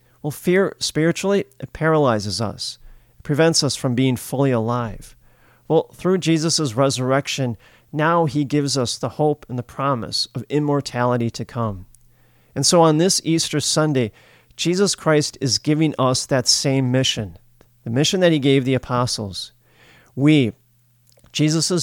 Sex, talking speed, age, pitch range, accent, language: male, 140 wpm, 40-59, 120-150 Hz, American, English